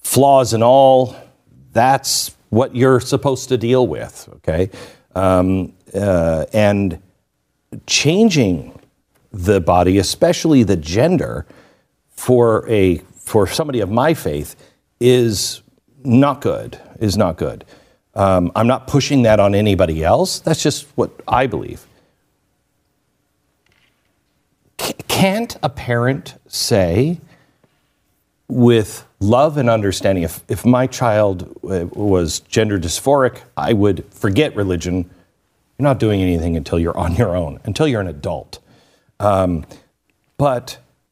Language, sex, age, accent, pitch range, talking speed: English, male, 50-69, American, 95-145 Hz, 120 wpm